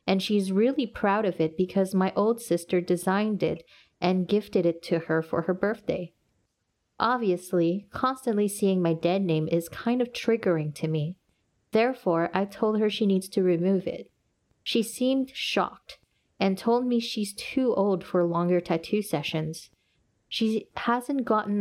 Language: English